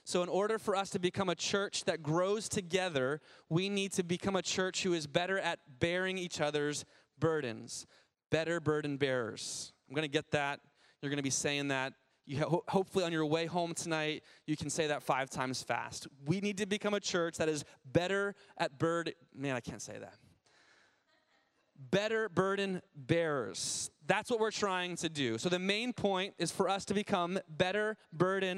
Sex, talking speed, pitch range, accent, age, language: male, 190 wpm, 145-190 Hz, American, 20-39, English